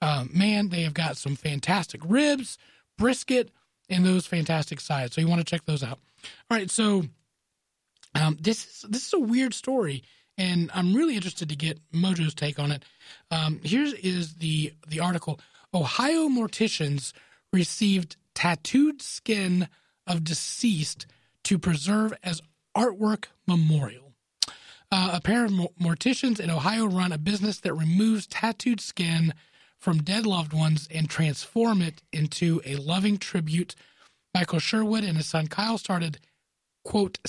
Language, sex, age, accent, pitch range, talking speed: English, male, 30-49, American, 155-210 Hz, 150 wpm